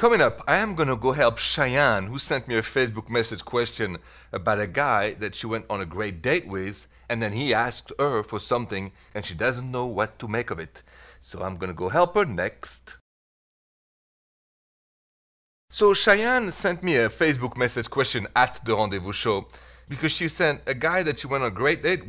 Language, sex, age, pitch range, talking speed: English, male, 30-49, 95-130 Hz, 205 wpm